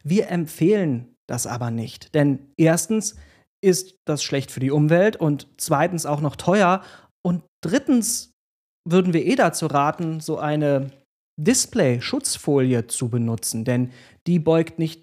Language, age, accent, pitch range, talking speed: German, 40-59, German, 140-180 Hz, 135 wpm